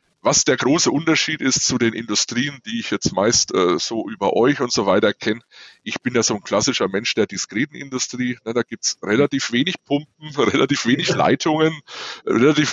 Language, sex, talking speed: German, male, 195 wpm